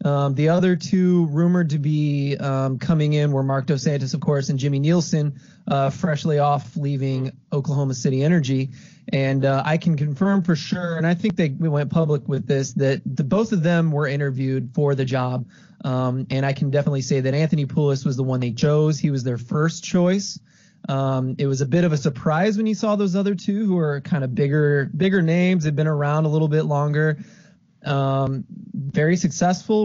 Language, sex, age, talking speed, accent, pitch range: English, male, 20-39, 205 wpm, American, 135-175 Hz